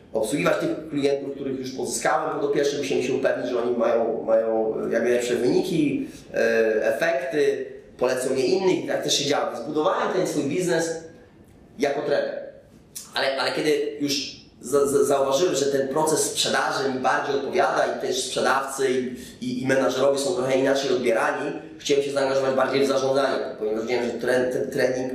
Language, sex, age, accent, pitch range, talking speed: Polish, male, 20-39, native, 130-155 Hz, 160 wpm